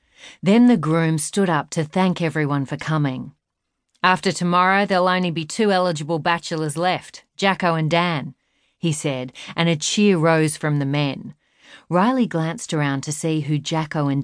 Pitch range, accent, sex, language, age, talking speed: 145-175 Hz, Australian, female, English, 40-59, 165 wpm